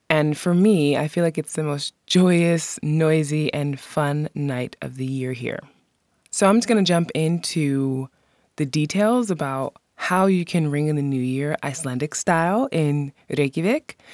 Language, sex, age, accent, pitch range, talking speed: English, female, 20-39, American, 140-175 Hz, 170 wpm